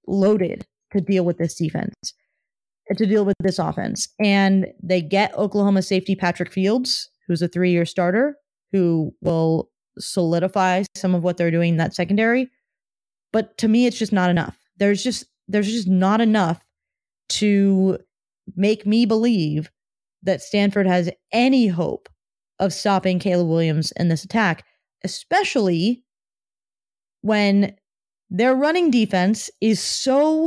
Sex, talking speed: female, 140 wpm